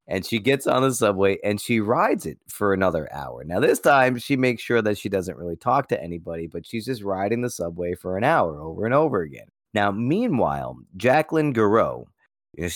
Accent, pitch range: American, 90-120 Hz